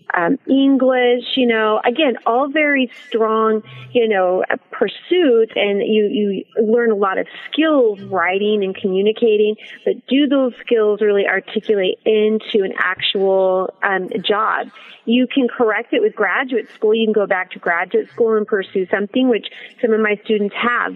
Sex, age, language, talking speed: female, 30-49, English, 165 wpm